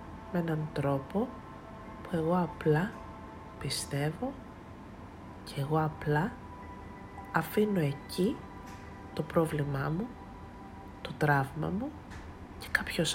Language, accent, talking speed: Greek, native, 90 wpm